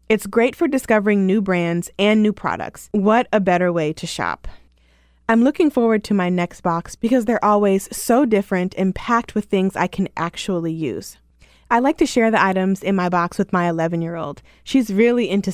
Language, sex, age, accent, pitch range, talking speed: English, female, 20-39, American, 170-225 Hz, 200 wpm